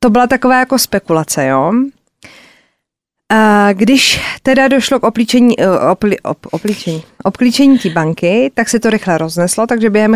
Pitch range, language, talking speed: 205-255 Hz, Czech, 150 wpm